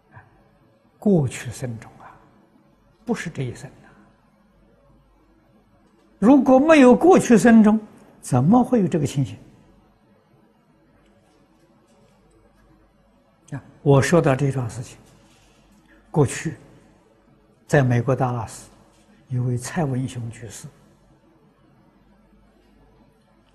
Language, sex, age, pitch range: Chinese, male, 60-79, 120-150 Hz